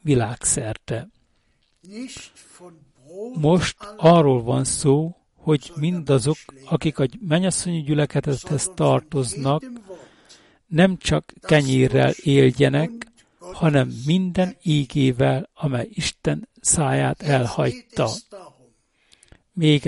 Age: 60-79